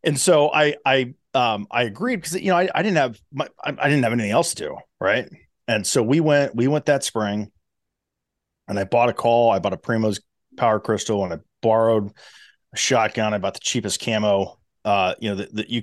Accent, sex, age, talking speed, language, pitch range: American, male, 30-49, 225 wpm, English, 105-130 Hz